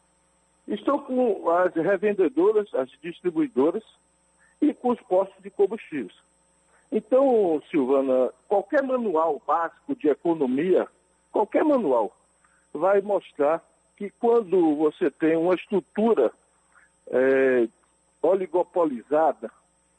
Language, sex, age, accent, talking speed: Portuguese, male, 60-79, Brazilian, 95 wpm